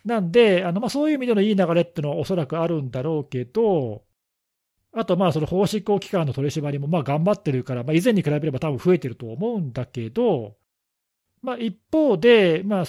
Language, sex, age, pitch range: Japanese, male, 40-59, 125-190 Hz